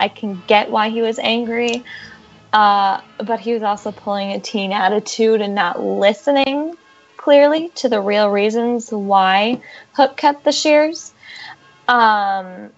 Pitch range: 195-235 Hz